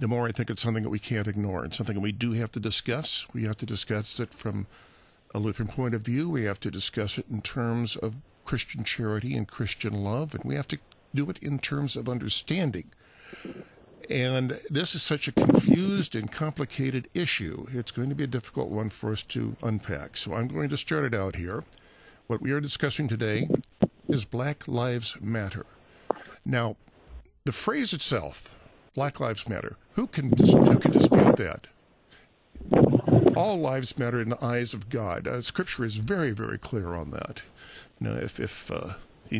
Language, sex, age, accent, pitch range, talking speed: English, male, 50-69, American, 110-140 Hz, 190 wpm